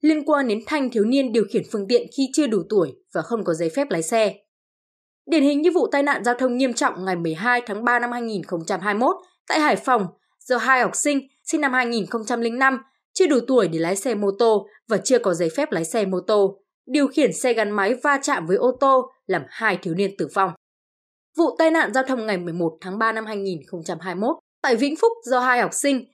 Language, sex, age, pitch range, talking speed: Vietnamese, female, 20-39, 205-275 Hz, 225 wpm